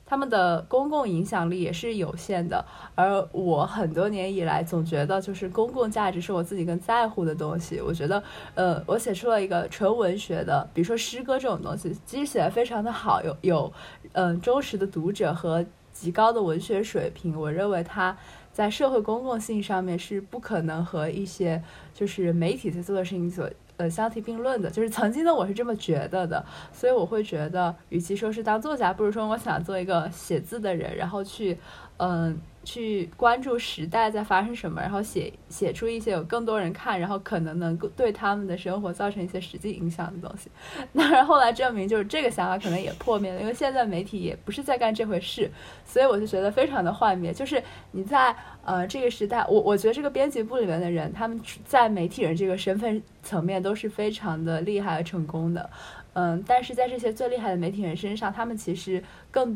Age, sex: 20-39, female